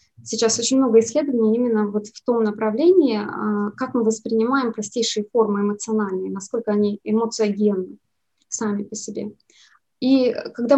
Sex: female